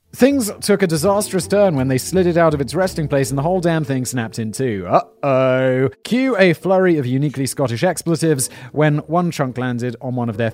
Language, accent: English, British